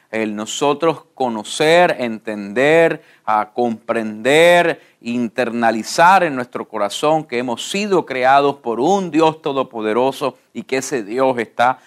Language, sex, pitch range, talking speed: English, male, 120-160 Hz, 110 wpm